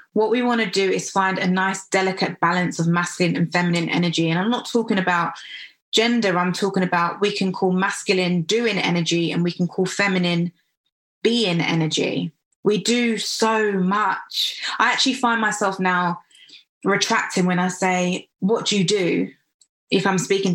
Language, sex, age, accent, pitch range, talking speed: English, female, 20-39, British, 180-225 Hz, 170 wpm